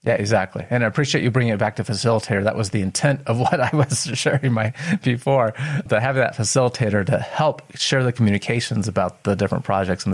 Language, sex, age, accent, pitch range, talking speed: English, male, 30-49, American, 100-120 Hz, 215 wpm